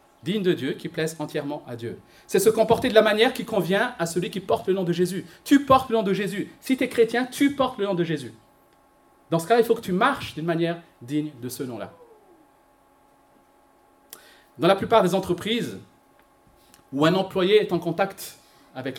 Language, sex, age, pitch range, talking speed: French, male, 40-59, 150-215 Hz, 210 wpm